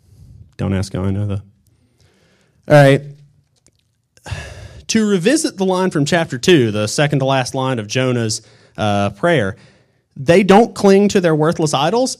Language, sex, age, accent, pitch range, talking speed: English, male, 30-49, American, 110-140 Hz, 150 wpm